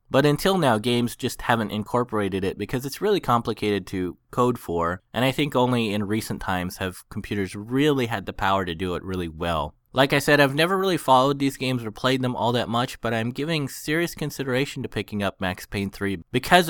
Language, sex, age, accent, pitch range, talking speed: English, male, 20-39, American, 110-140 Hz, 215 wpm